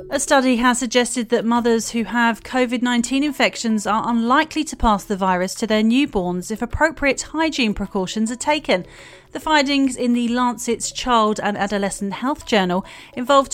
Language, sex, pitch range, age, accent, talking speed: English, female, 205-260 Hz, 40-59, British, 160 wpm